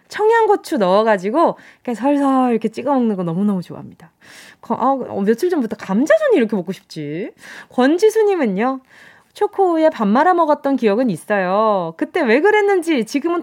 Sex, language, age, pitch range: female, Korean, 20-39, 205-315 Hz